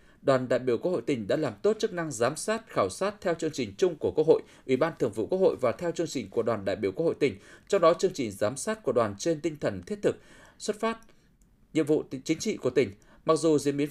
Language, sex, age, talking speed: Vietnamese, male, 20-39, 275 wpm